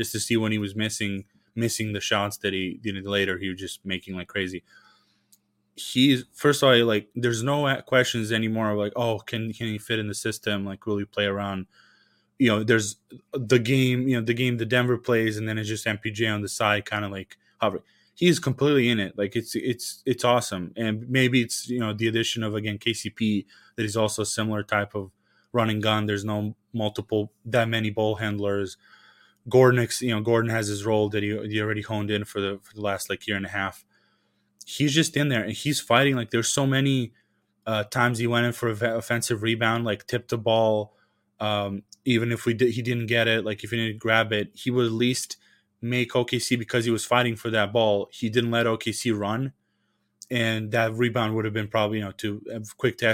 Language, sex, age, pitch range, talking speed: English, male, 20-39, 105-120 Hz, 220 wpm